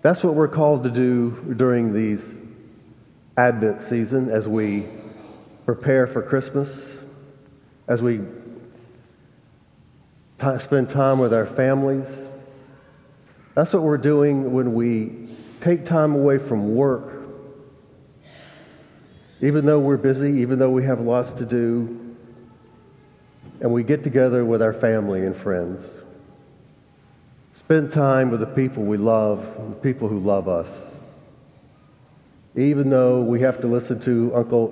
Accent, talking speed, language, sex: American, 125 wpm, English, male